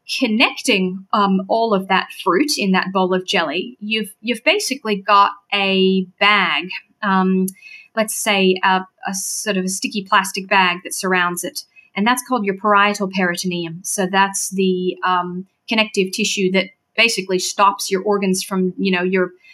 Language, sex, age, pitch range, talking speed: English, female, 30-49, 185-230 Hz, 160 wpm